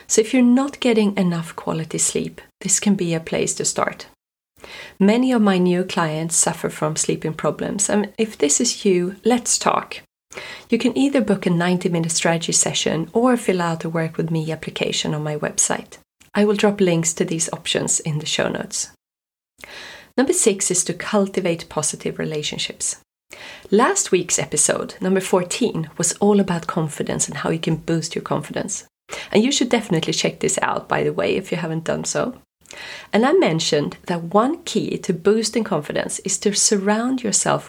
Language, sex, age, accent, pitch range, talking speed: English, female, 30-49, Swedish, 165-215 Hz, 180 wpm